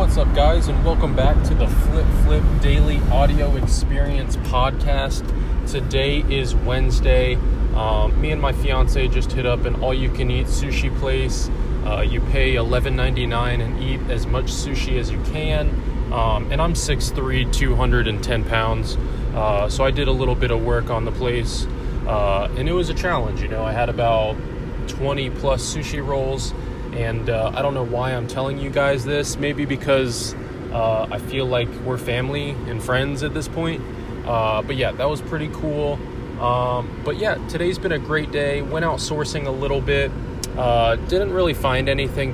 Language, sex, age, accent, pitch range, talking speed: English, male, 20-39, American, 115-135 Hz, 175 wpm